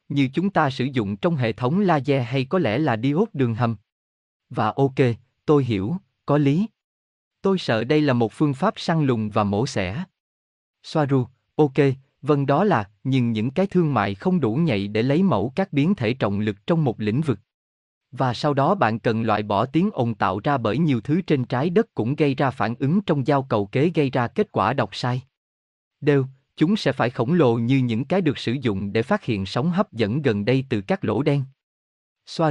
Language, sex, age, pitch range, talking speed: Vietnamese, male, 20-39, 110-150 Hz, 215 wpm